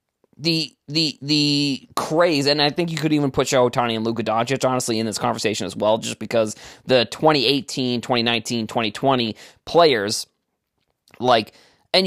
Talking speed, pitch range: 155 wpm, 120-155 Hz